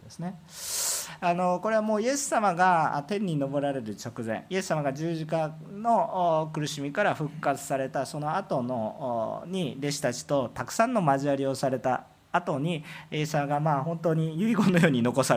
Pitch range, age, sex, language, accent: 130-180 Hz, 40-59, male, Japanese, native